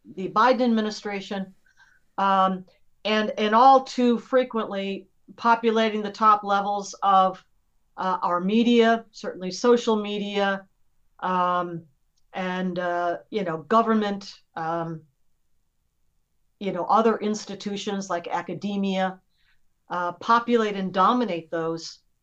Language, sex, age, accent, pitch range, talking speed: English, female, 50-69, American, 190-230 Hz, 105 wpm